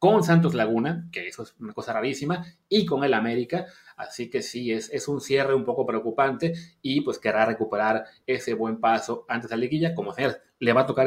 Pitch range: 115-165 Hz